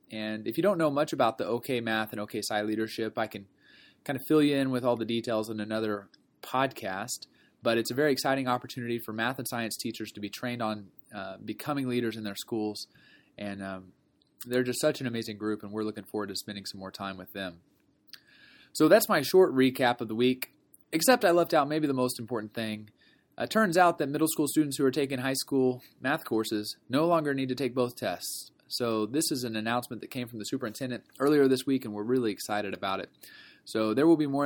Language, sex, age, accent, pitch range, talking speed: English, male, 20-39, American, 105-135 Hz, 225 wpm